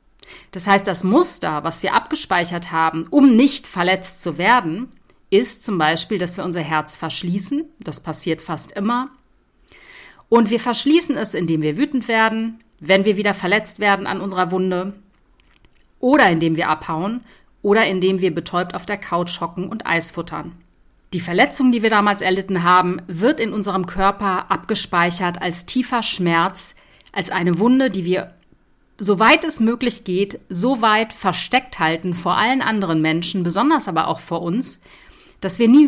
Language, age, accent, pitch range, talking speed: German, 50-69, German, 175-225 Hz, 160 wpm